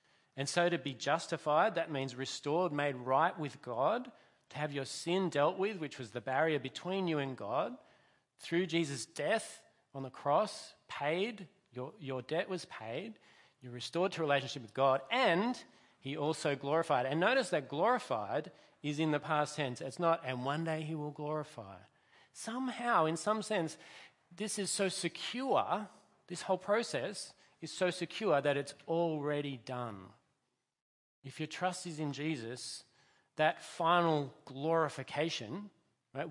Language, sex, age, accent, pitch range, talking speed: English, male, 40-59, Australian, 130-170 Hz, 155 wpm